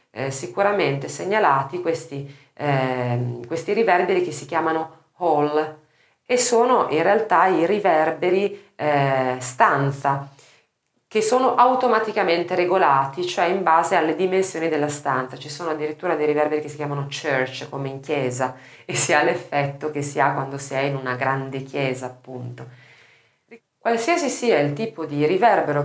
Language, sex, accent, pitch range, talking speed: Italian, female, native, 140-190 Hz, 140 wpm